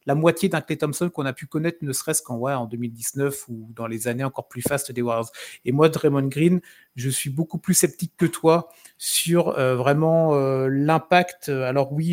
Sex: male